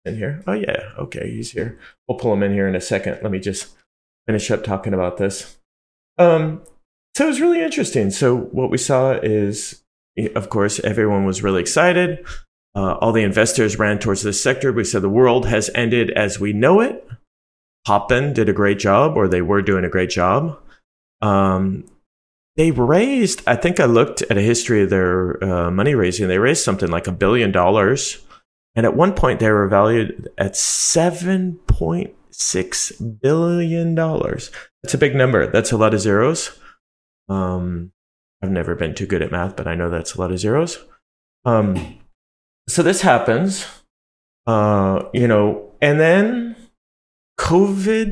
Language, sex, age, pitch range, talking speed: English, male, 30-49, 95-140 Hz, 170 wpm